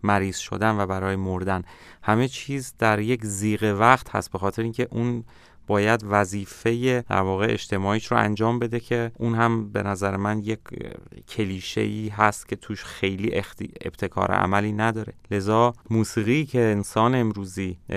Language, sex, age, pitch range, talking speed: Persian, male, 30-49, 105-120 Hz, 145 wpm